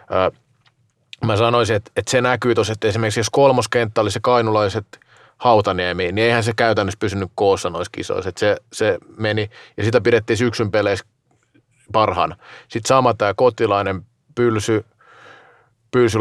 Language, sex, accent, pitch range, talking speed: Finnish, male, native, 105-120 Hz, 135 wpm